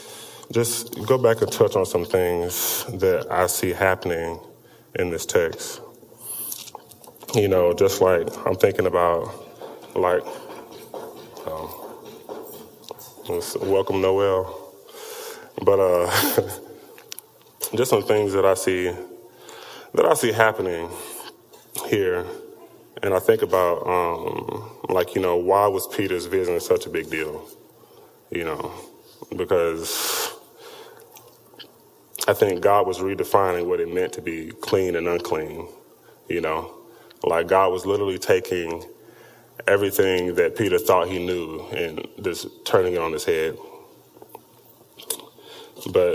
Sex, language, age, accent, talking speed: male, English, 20-39, American, 120 wpm